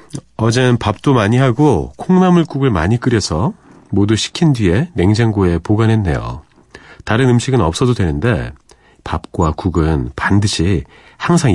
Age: 40-59